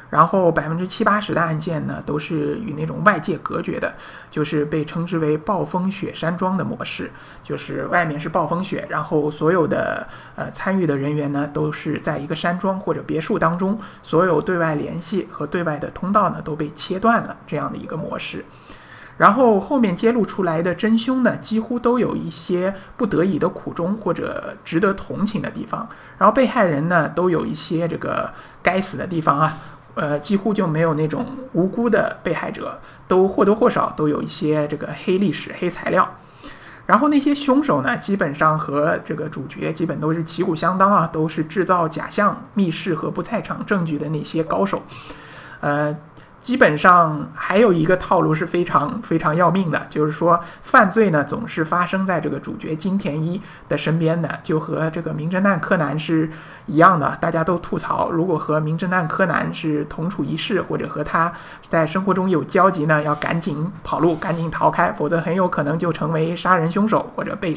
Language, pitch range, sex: Chinese, 155-190 Hz, male